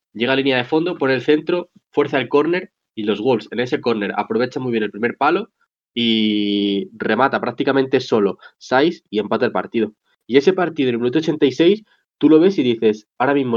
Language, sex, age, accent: Spanish, male, 20-39, Spanish